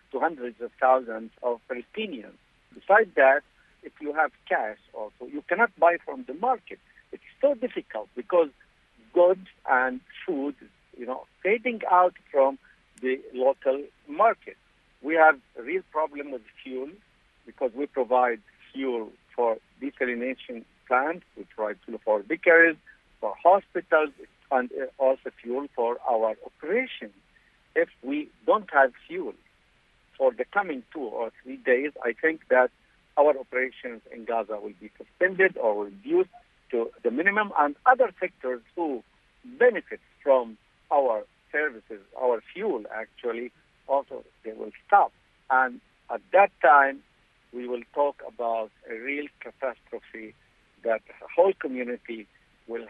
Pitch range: 125-200 Hz